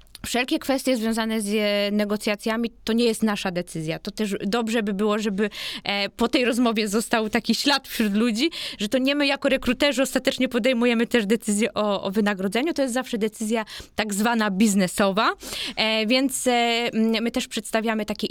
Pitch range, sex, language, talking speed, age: 205-255 Hz, female, Polish, 160 wpm, 20-39